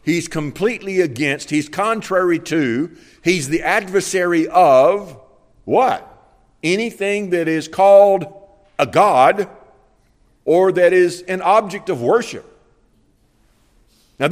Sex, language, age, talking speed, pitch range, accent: male, English, 50-69, 105 wpm, 120-180 Hz, American